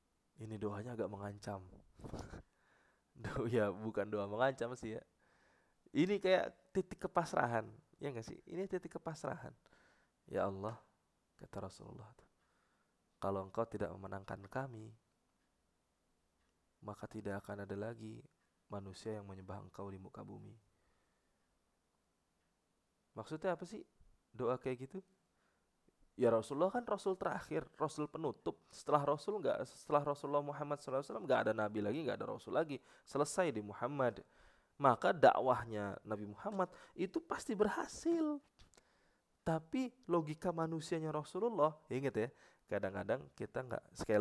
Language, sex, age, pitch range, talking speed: English, male, 20-39, 100-145 Hz, 120 wpm